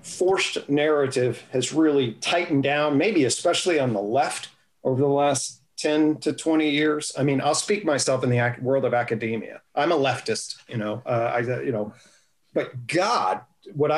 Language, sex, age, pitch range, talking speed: English, male, 40-59, 125-155 Hz, 175 wpm